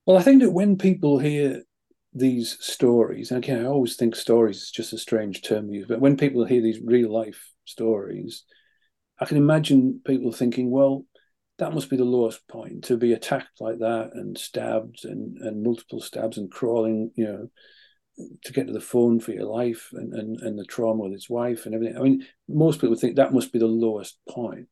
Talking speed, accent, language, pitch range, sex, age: 210 wpm, British, English, 110-135 Hz, male, 40-59